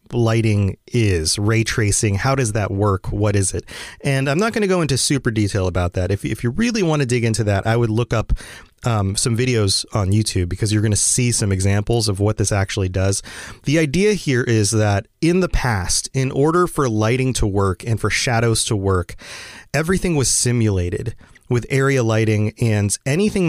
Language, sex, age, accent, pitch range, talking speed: English, male, 30-49, American, 110-135 Hz, 200 wpm